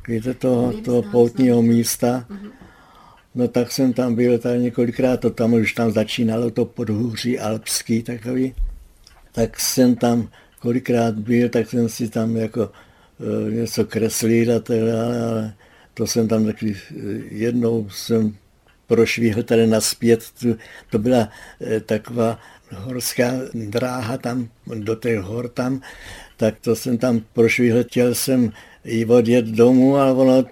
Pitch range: 115-140 Hz